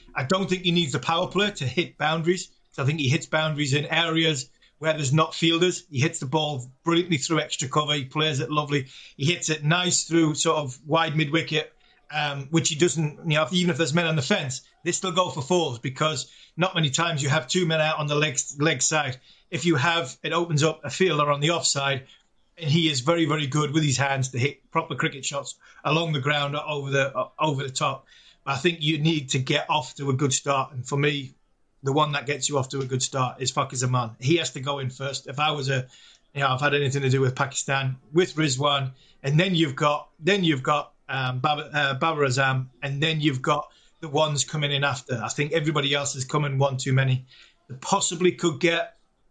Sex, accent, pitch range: male, British, 140-165 Hz